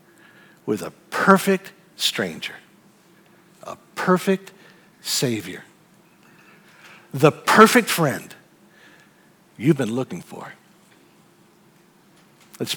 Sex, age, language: male, 60-79, English